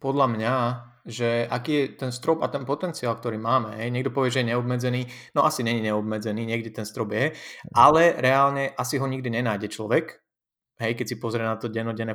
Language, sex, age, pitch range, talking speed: Slovak, male, 20-39, 110-130 Hz, 195 wpm